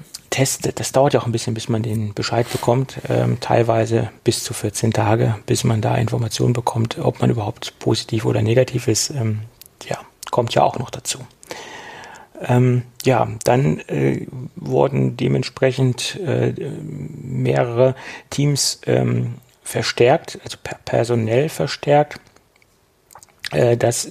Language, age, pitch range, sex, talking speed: German, 40-59, 110-125 Hz, male, 135 wpm